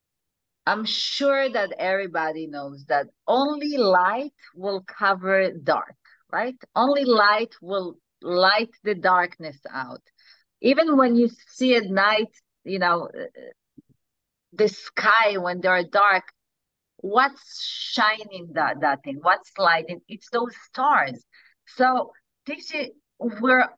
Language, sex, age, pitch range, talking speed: English, female, 40-59, 185-250 Hz, 110 wpm